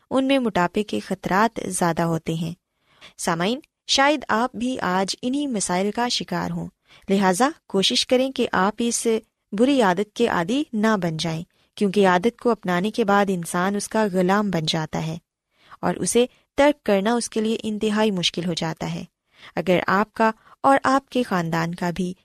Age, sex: 20-39, female